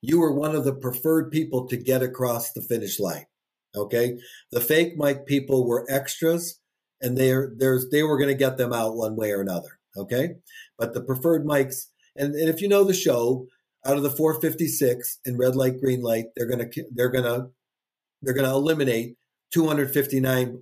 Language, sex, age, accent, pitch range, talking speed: English, male, 50-69, American, 125-155 Hz, 185 wpm